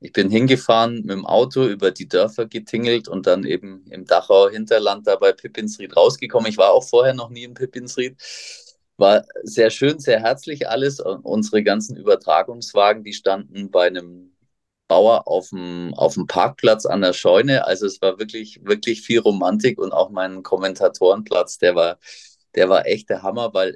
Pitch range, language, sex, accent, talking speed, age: 100-145 Hz, German, male, German, 175 wpm, 30-49